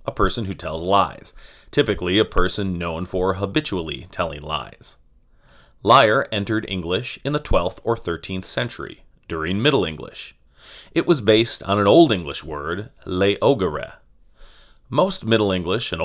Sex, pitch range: male, 90-110 Hz